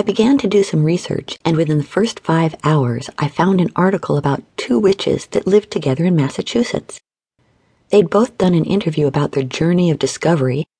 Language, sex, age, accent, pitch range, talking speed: English, female, 50-69, American, 140-195 Hz, 190 wpm